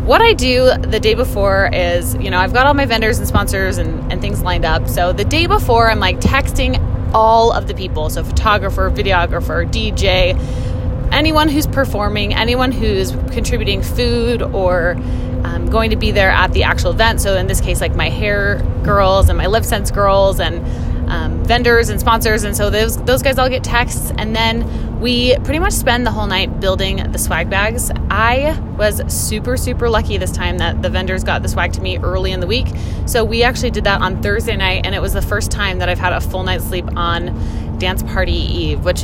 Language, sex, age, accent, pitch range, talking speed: English, female, 20-39, American, 85-110 Hz, 210 wpm